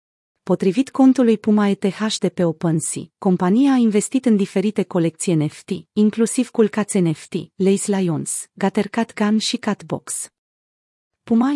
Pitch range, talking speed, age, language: 180-220 Hz, 130 wpm, 30-49, Romanian